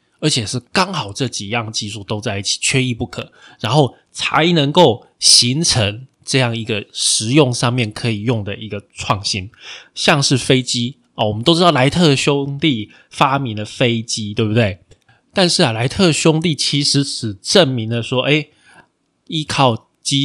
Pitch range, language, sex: 110-150 Hz, Chinese, male